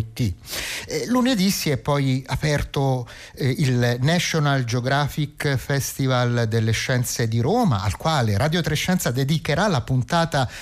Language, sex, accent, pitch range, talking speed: Italian, male, native, 115-165 Hz, 125 wpm